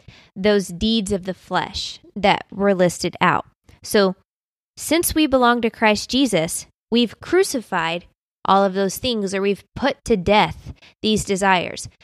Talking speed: 145 wpm